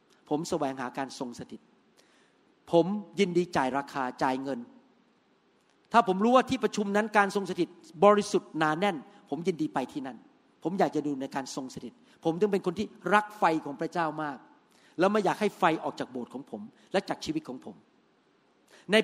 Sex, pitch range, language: male, 175-235 Hz, Thai